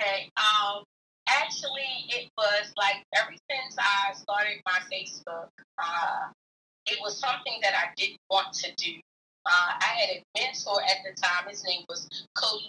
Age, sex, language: 30-49, female, English